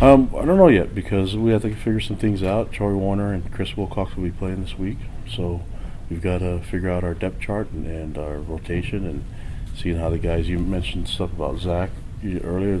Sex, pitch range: male, 85-95 Hz